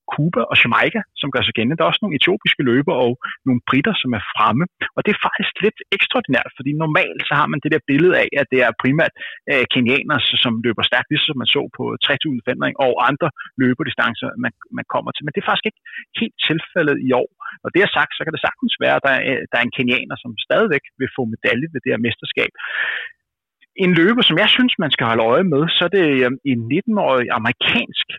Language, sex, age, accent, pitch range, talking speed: Danish, male, 30-49, native, 125-175 Hz, 230 wpm